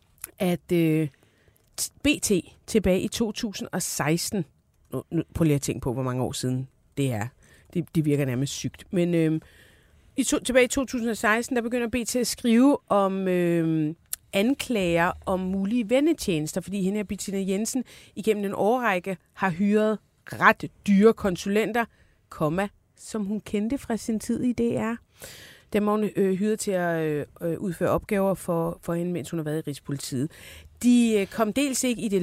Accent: native